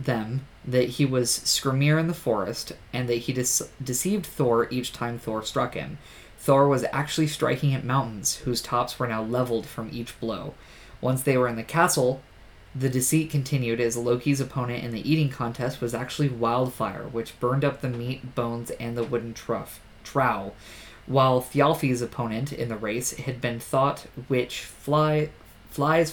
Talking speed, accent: 165 wpm, American